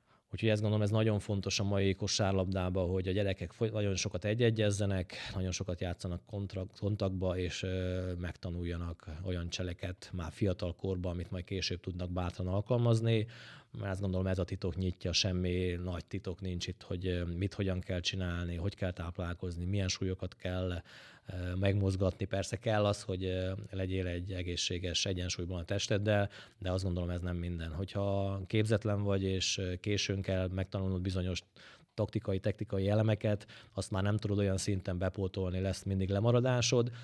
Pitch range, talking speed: 95-105 Hz, 150 wpm